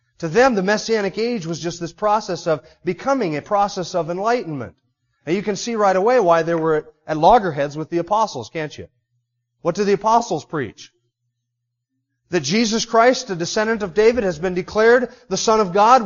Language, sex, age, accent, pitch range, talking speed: English, male, 30-49, American, 170-230 Hz, 185 wpm